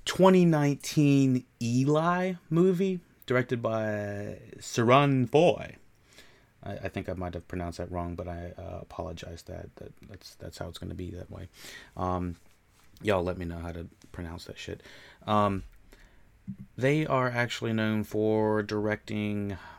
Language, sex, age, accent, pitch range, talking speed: English, male, 30-49, American, 95-130 Hz, 145 wpm